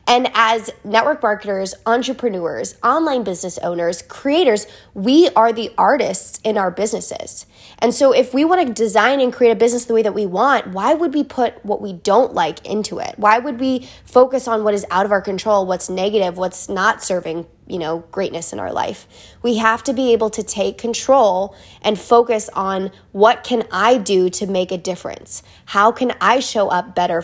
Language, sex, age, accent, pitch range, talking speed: English, female, 20-39, American, 190-235 Hz, 195 wpm